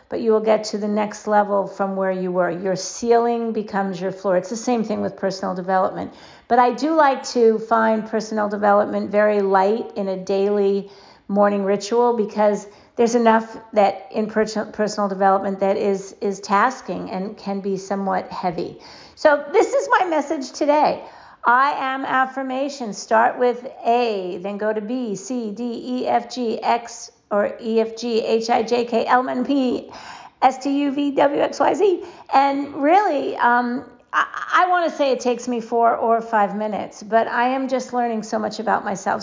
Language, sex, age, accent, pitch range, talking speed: English, female, 50-69, American, 205-250 Hz, 160 wpm